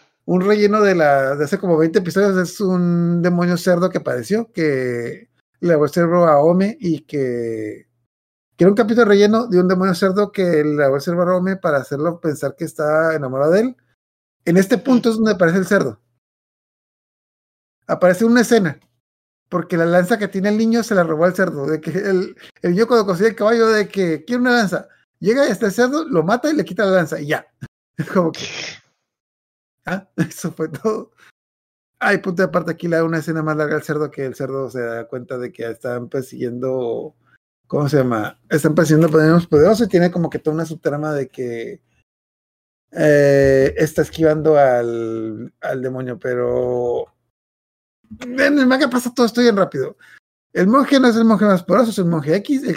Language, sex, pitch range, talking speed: Spanish, male, 140-195 Hz, 195 wpm